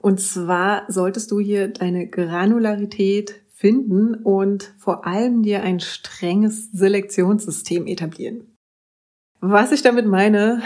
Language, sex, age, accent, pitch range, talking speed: German, female, 30-49, German, 180-210 Hz, 115 wpm